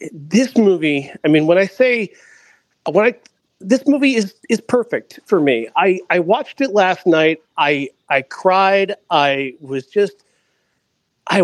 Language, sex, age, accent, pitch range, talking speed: English, male, 40-59, American, 155-225 Hz, 150 wpm